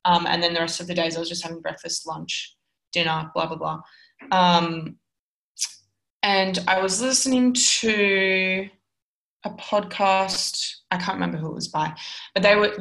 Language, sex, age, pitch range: English, female, 20-39, 180-210 Hz